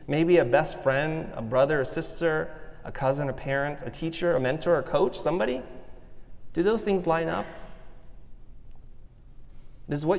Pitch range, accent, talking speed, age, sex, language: 130-160 Hz, American, 155 wpm, 30-49, male, English